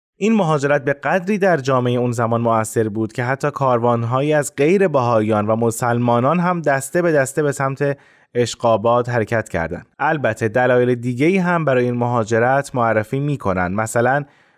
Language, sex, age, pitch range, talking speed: Persian, male, 20-39, 115-145 Hz, 150 wpm